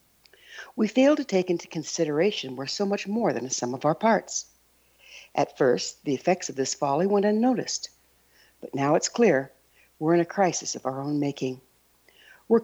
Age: 60-79